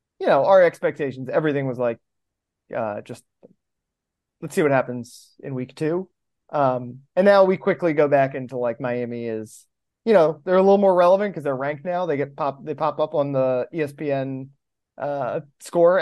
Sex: male